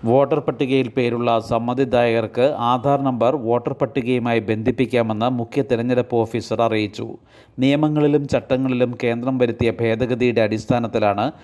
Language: Malayalam